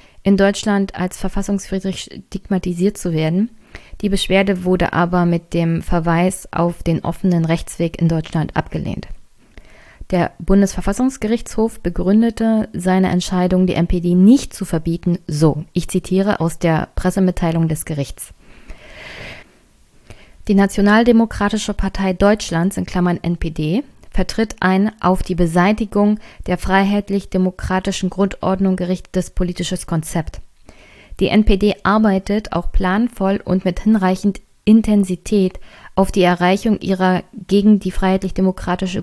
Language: German